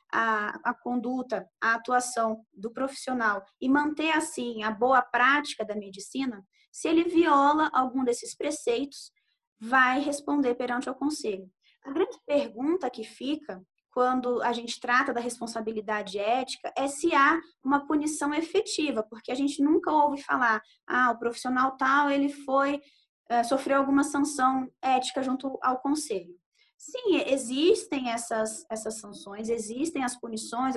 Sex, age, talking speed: female, 20-39, 140 wpm